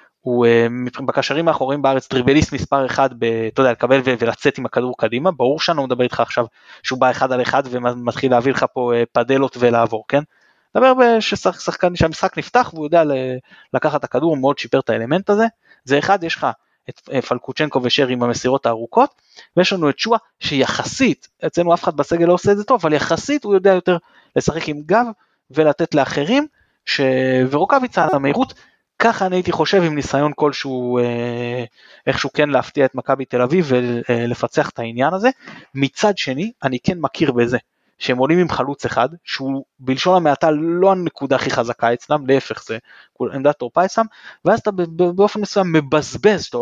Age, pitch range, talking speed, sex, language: 20-39, 125-180 Hz, 175 wpm, male, Hebrew